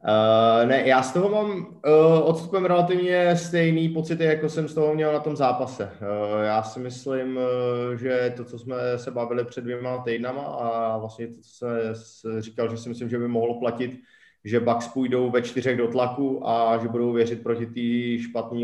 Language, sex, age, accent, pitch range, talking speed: Czech, male, 20-39, native, 115-135 Hz, 190 wpm